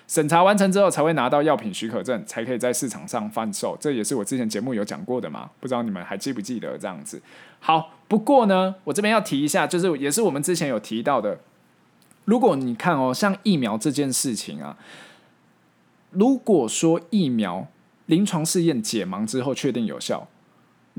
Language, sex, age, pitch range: Chinese, male, 20-39, 130-190 Hz